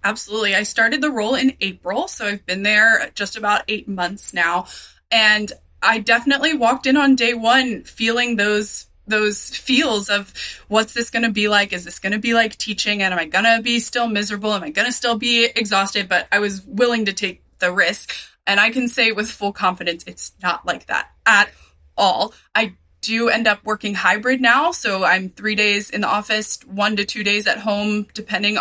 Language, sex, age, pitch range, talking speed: English, female, 20-39, 185-225 Hz, 210 wpm